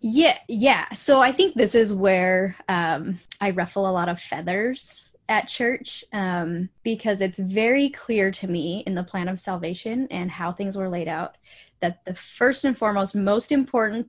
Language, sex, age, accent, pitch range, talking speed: English, female, 10-29, American, 180-225 Hz, 180 wpm